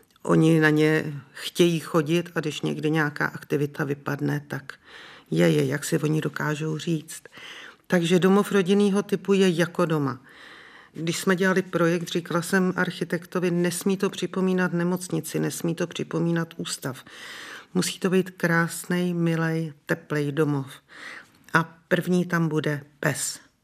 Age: 50-69